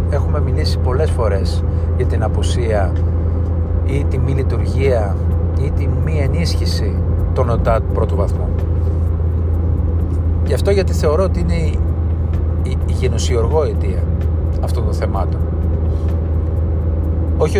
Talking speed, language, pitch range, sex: 105 wpm, Greek, 80-85 Hz, male